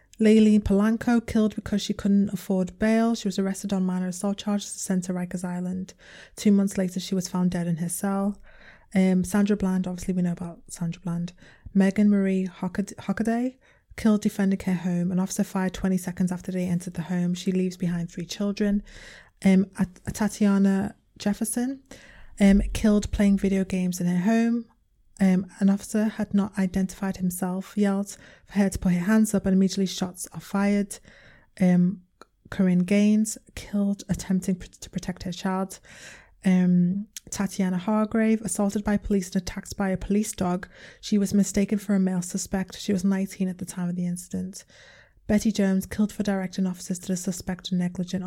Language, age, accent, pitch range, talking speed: English, 20-39, British, 185-205 Hz, 175 wpm